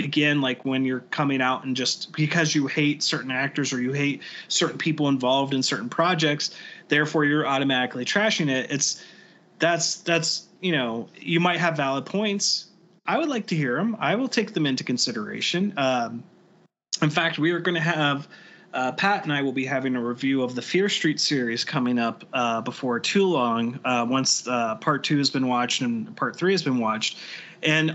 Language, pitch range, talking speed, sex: English, 135-175 Hz, 200 wpm, male